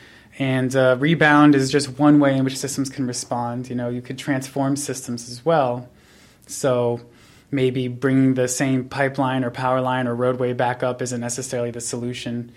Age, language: 20-39, English